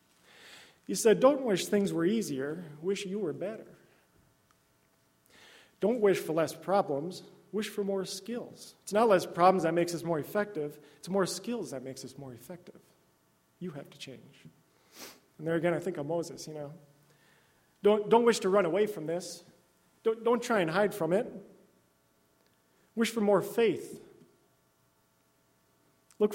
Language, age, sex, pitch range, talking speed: English, 40-59, male, 145-200 Hz, 160 wpm